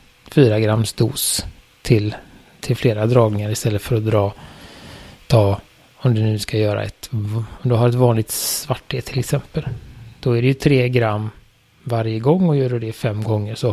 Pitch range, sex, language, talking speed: 115-145 Hz, male, Swedish, 185 wpm